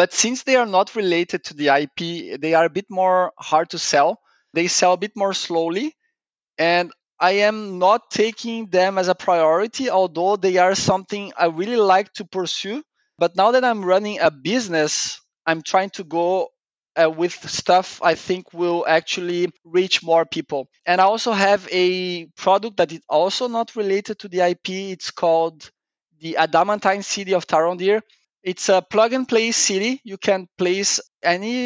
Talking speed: 170 wpm